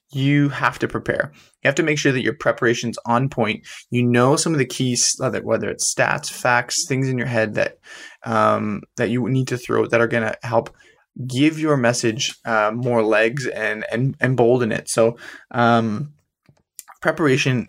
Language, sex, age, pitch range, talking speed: English, male, 20-39, 115-135 Hz, 185 wpm